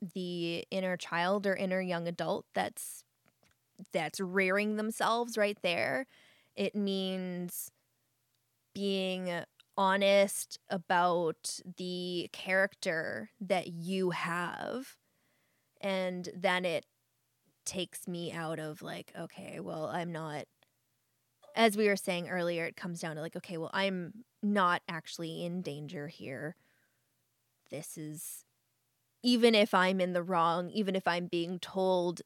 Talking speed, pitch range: 125 wpm, 165-195 Hz